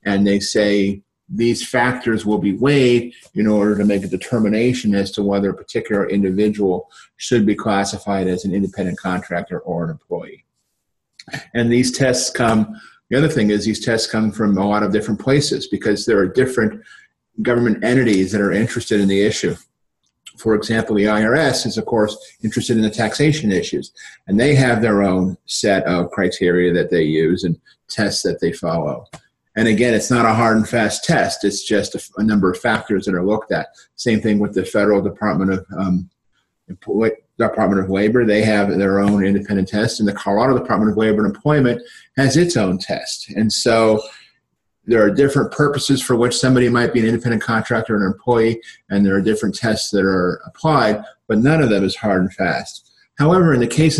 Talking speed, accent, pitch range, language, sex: 195 wpm, American, 100-120 Hz, English, male